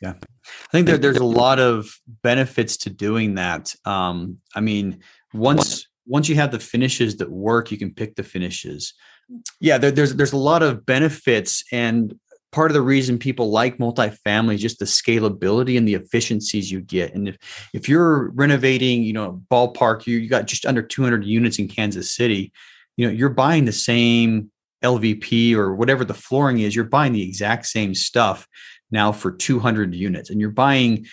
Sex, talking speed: male, 185 wpm